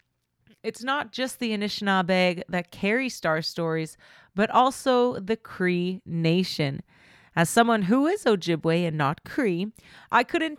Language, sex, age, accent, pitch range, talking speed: English, female, 30-49, American, 180-235 Hz, 135 wpm